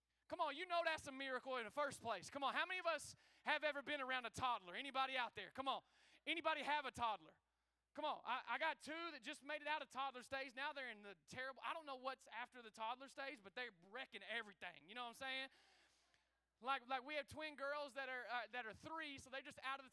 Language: English